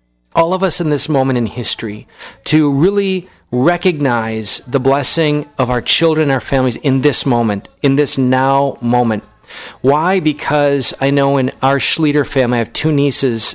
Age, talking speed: 40-59, 170 wpm